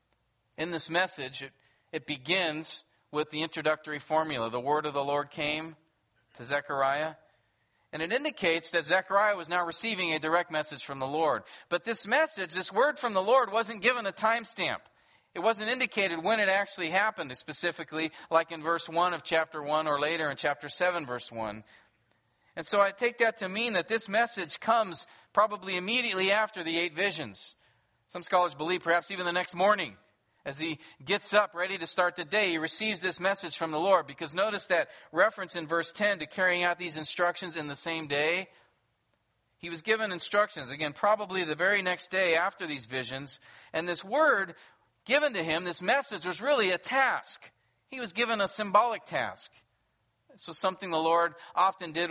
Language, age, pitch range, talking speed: English, 40-59, 150-190 Hz, 185 wpm